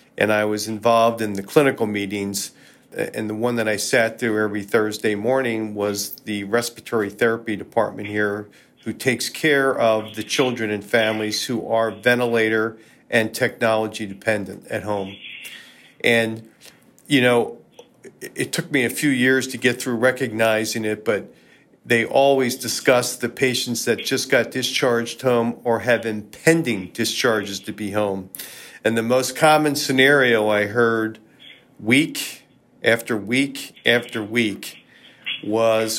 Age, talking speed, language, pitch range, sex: 40-59, 140 wpm, English, 110-125 Hz, male